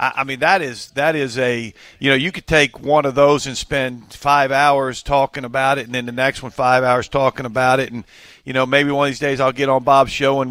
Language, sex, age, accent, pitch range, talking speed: English, male, 50-69, American, 115-135 Hz, 265 wpm